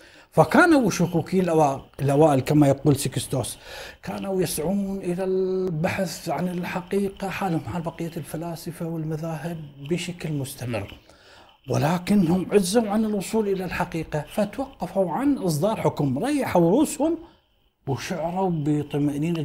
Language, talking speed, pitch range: Arabic, 100 wpm, 150-195 Hz